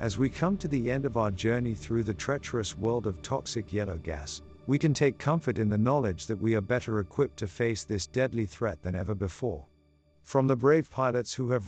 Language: English